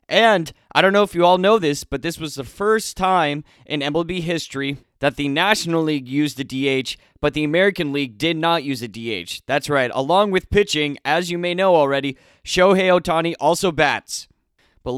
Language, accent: English, American